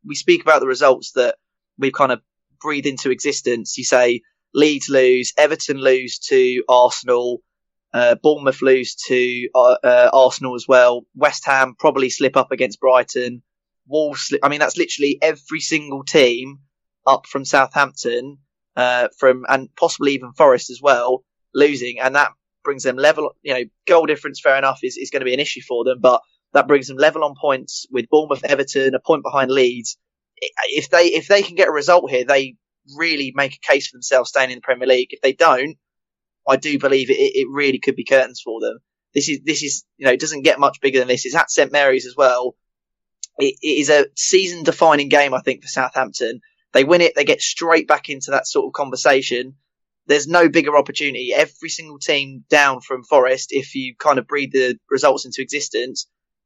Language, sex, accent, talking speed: English, male, British, 200 wpm